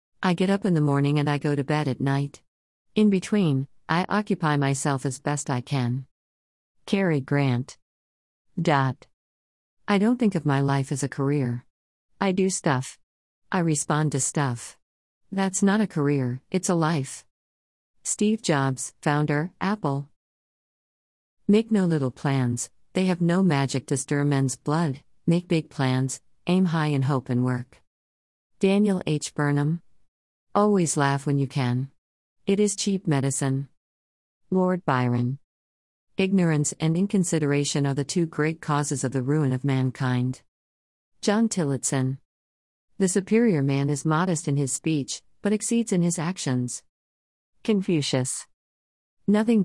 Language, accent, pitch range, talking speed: English, American, 125-170 Hz, 140 wpm